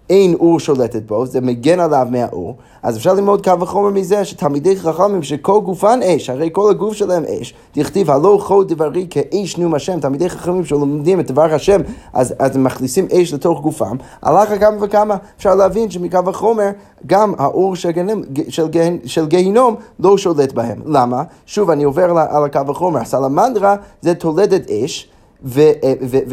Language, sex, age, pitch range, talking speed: Hebrew, male, 30-49, 135-195 Hz, 165 wpm